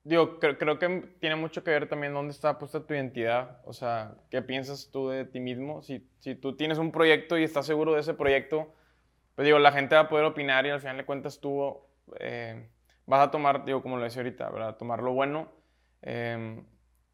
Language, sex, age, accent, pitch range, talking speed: Spanish, male, 20-39, Mexican, 130-150 Hz, 215 wpm